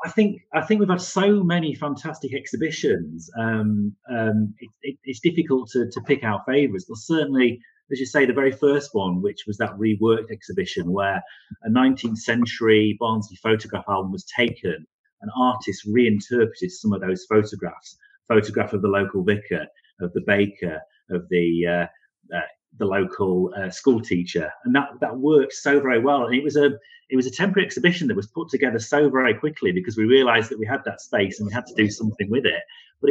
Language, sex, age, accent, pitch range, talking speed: English, male, 30-49, British, 105-140 Hz, 195 wpm